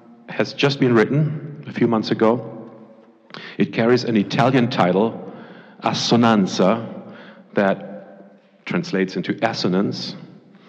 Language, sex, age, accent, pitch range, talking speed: English, male, 40-59, German, 100-120 Hz, 100 wpm